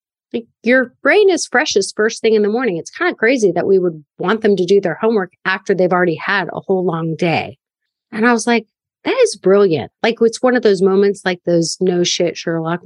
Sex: female